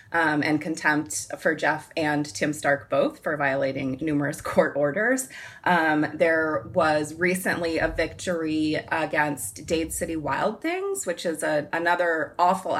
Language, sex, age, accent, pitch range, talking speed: English, female, 20-39, American, 150-180 Hz, 135 wpm